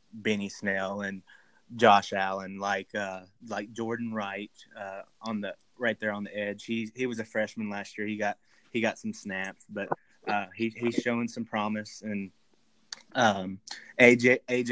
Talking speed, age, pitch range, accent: 165 wpm, 20-39, 100-115 Hz, American